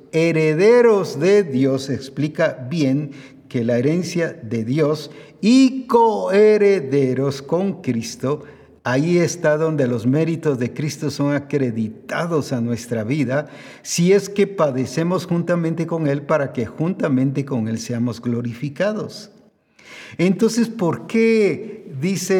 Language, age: Spanish, 50-69